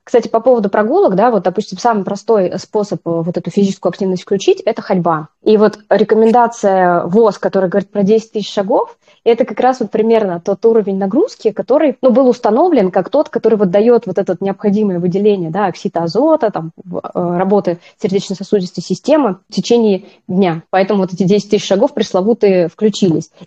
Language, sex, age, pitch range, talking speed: Russian, female, 20-39, 185-225 Hz, 165 wpm